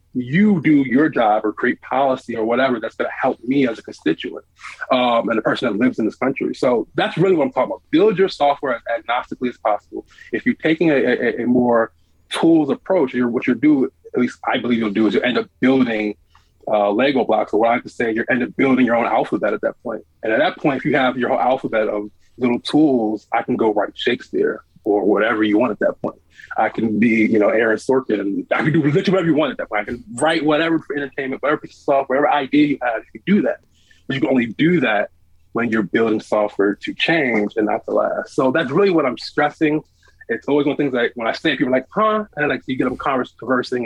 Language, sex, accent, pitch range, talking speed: English, male, American, 105-145 Hz, 255 wpm